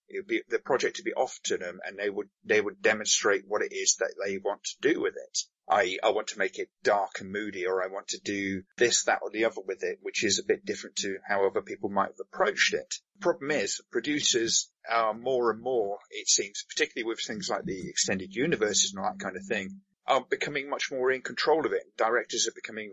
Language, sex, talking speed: English, male, 245 wpm